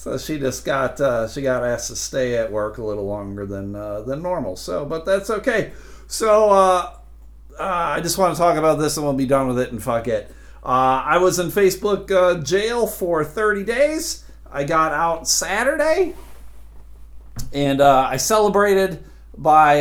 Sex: male